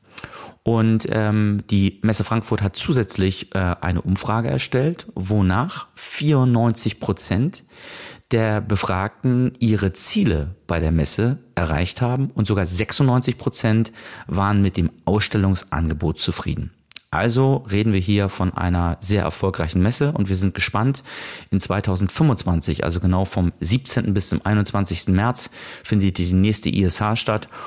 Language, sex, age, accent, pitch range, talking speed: German, male, 40-59, German, 90-115 Hz, 130 wpm